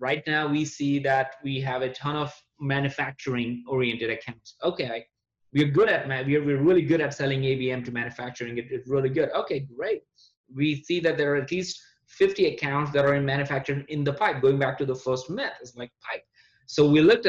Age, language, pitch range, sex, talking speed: 20-39, English, 135-165 Hz, male, 200 wpm